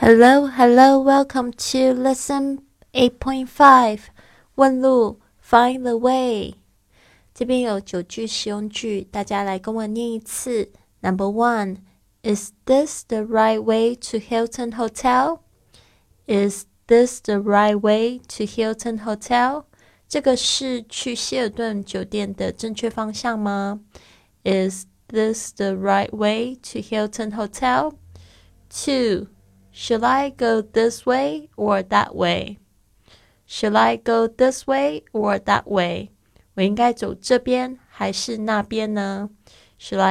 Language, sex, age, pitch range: Chinese, female, 20-39, 195-250 Hz